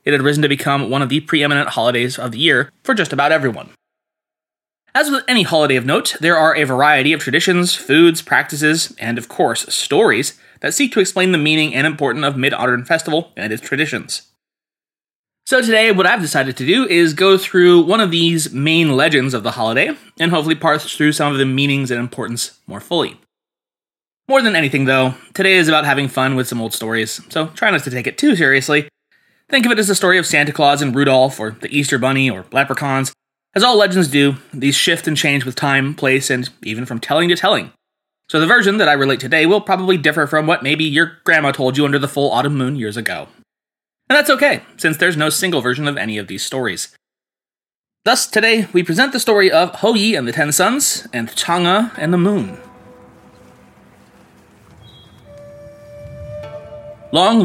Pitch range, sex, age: 130-175 Hz, male, 20-39